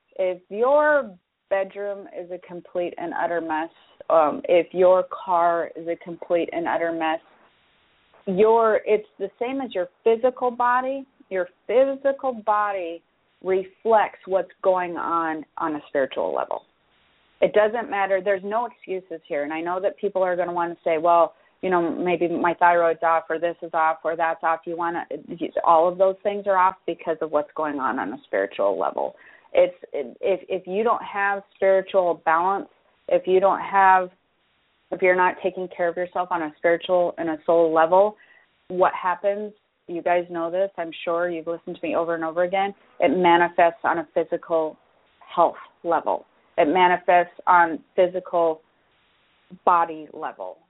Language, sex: English, female